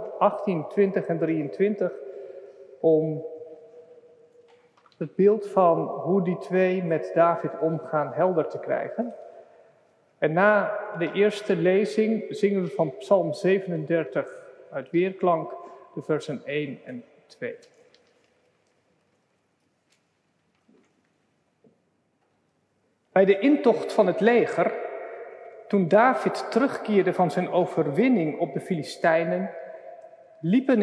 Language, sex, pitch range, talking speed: Dutch, male, 175-260 Hz, 95 wpm